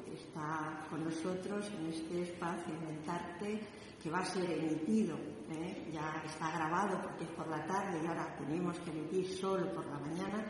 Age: 40-59